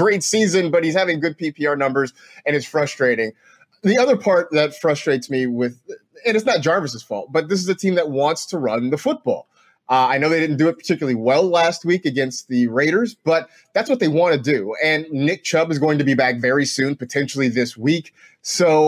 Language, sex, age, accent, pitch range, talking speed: English, male, 30-49, American, 130-170 Hz, 220 wpm